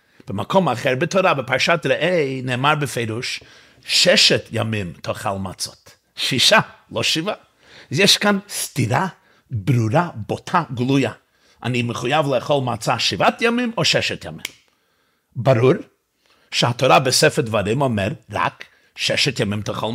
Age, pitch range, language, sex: 50-69, 125-190 Hz, Hebrew, male